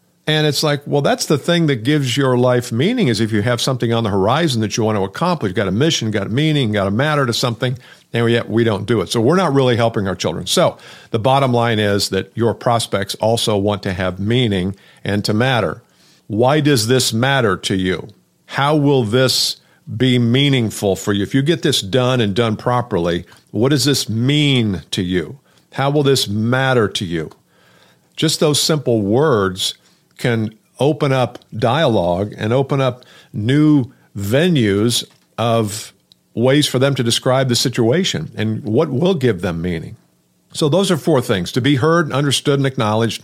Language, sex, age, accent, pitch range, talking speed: English, male, 50-69, American, 105-140 Hz, 195 wpm